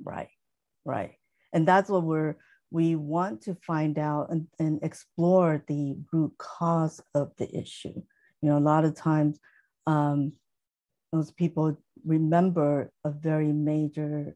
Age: 50-69